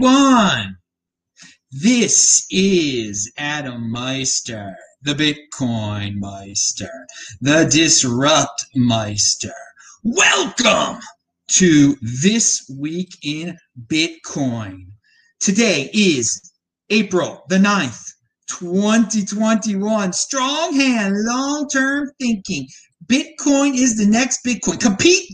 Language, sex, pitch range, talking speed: English, male, 165-275 Hz, 80 wpm